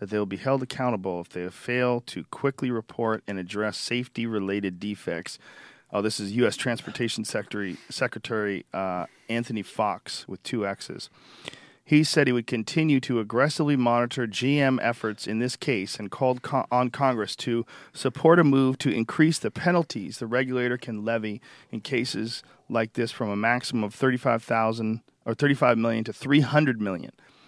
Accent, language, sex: American, English, male